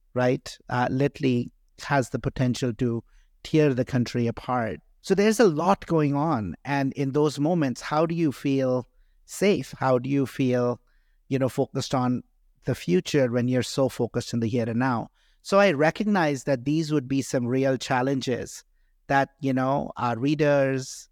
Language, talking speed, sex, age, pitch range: English, 170 wpm, male, 50-69, 125-155 Hz